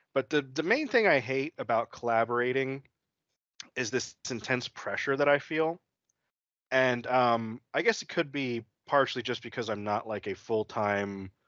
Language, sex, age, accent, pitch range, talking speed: English, male, 30-49, American, 110-135 Hz, 160 wpm